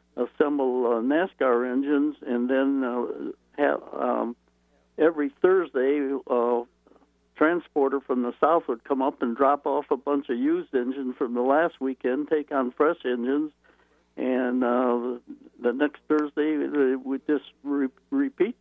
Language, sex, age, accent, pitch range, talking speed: English, male, 60-79, American, 120-140 Hz, 135 wpm